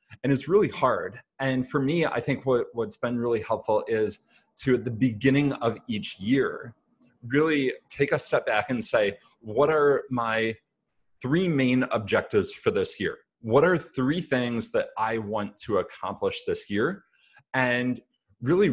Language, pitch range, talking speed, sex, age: English, 115-145 Hz, 160 wpm, male, 30-49